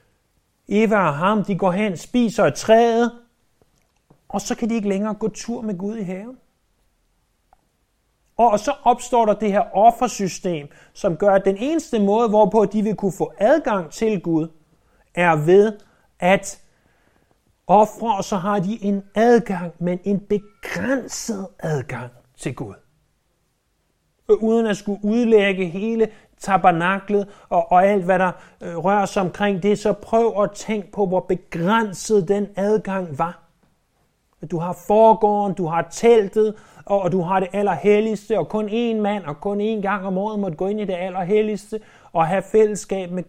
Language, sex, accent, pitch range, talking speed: Danish, male, native, 180-220 Hz, 160 wpm